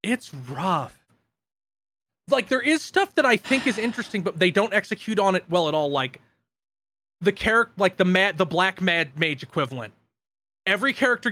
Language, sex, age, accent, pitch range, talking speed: English, male, 30-49, American, 150-200 Hz, 175 wpm